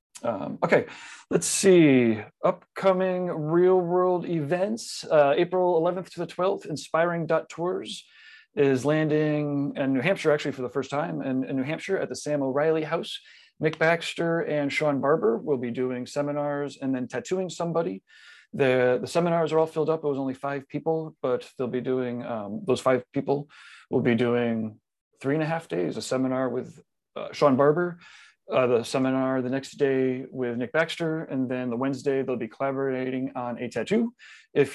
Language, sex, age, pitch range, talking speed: English, male, 30-49, 130-160 Hz, 175 wpm